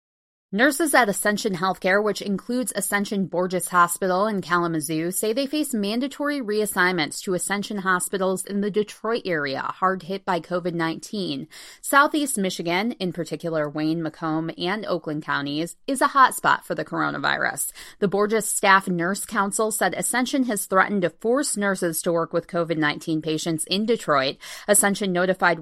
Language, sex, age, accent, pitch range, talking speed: English, female, 20-39, American, 170-215 Hz, 150 wpm